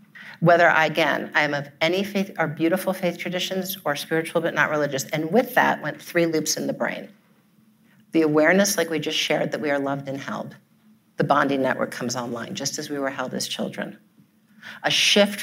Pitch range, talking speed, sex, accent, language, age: 140-185 Hz, 200 wpm, female, American, English, 50-69